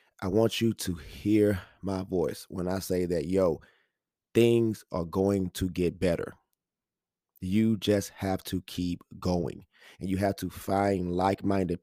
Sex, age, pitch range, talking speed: male, 30-49, 95-115 Hz, 150 wpm